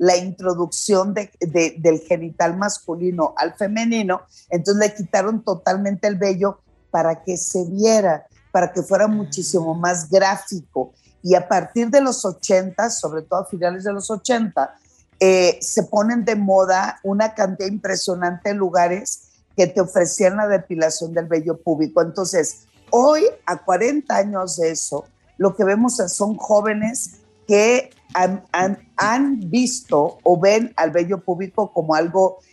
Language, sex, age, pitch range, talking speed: Spanish, female, 50-69, 175-210 Hz, 145 wpm